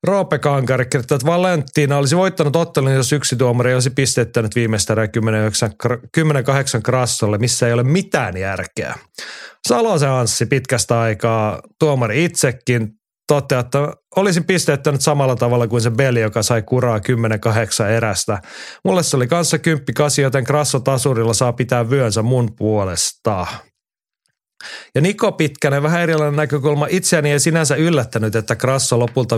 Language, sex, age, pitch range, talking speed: Finnish, male, 30-49, 115-145 Hz, 140 wpm